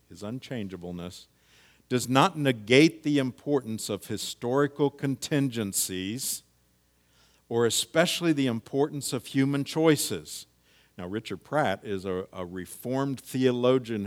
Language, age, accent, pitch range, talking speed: English, 50-69, American, 75-120 Hz, 105 wpm